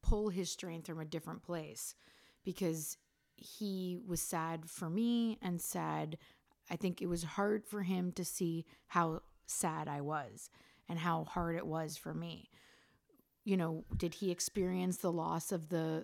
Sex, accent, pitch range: female, American, 165-195 Hz